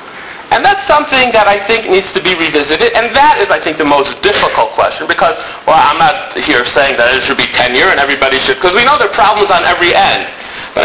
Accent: American